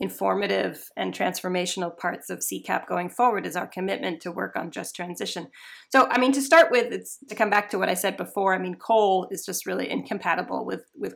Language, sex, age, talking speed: English, female, 30-49, 215 wpm